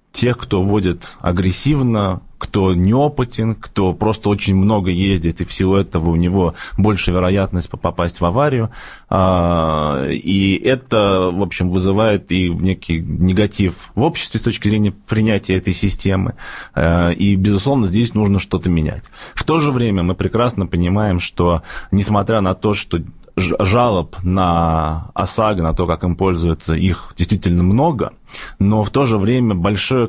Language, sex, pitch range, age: Russian, male, 85-105 Hz, 20-39